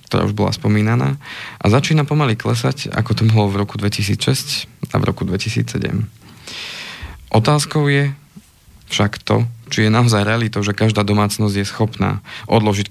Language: Slovak